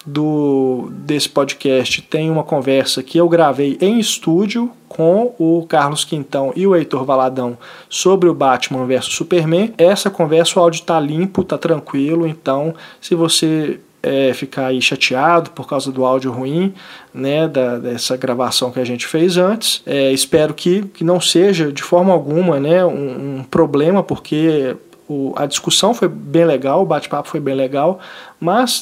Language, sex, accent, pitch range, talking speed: Portuguese, male, Brazilian, 135-175 Hz, 155 wpm